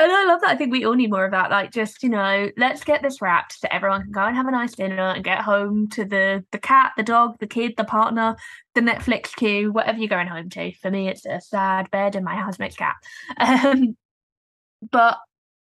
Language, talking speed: English, 235 wpm